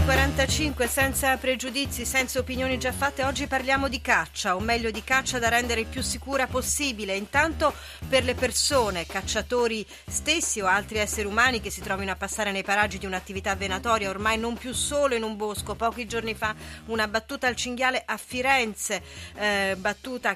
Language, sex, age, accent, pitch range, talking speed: Italian, female, 30-49, native, 205-265 Hz, 175 wpm